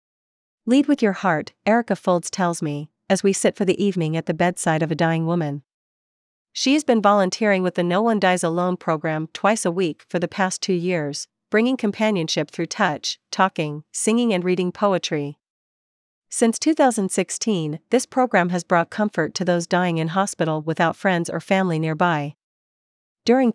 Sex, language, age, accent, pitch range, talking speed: female, English, 40-59, American, 165-205 Hz, 170 wpm